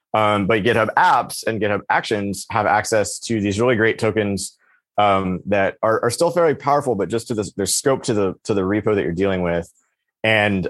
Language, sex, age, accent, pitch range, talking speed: English, male, 30-49, American, 95-110 Hz, 200 wpm